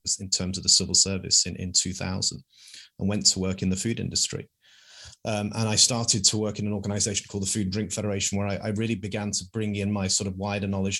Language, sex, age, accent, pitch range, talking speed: English, male, 30-49, British, 90-105 Hz, 245 wpm